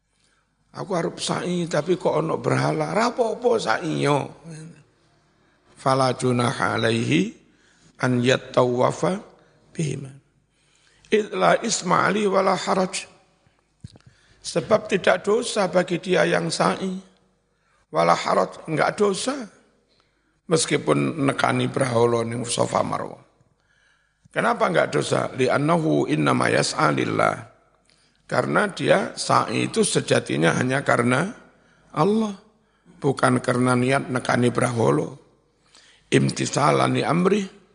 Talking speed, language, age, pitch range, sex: 90 wpm, Indonesian, 60-79, 130-190 Hz, male